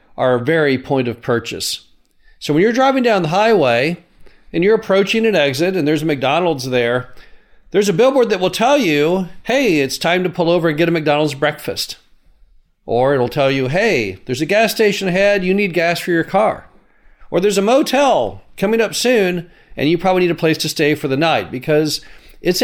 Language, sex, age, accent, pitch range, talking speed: English, male, 40-59, American, 140-185 Hz, 200 wpm